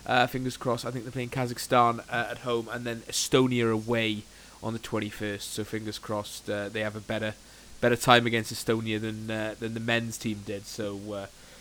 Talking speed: 200 wpm